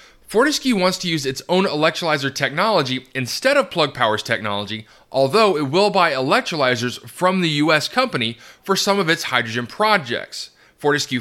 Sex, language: male, English